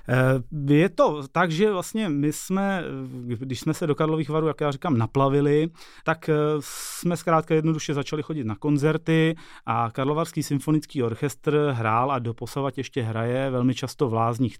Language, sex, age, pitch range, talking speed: Czech, male, 30-49, 125-155 Hz, 155 wpm